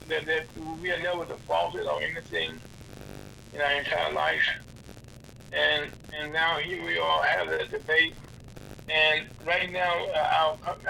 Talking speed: 130 wpm